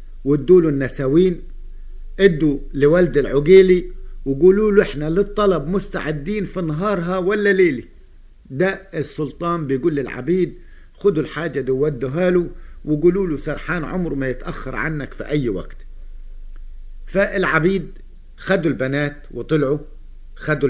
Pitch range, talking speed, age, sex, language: 120-170 Hz, 110 wpm, 50-69, male, Arabic